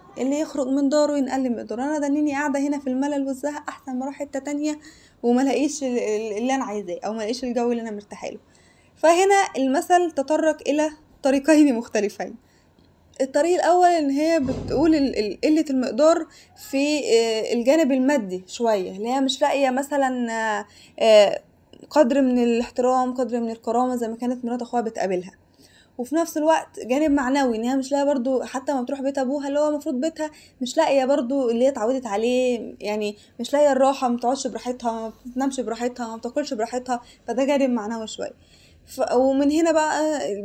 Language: Arabic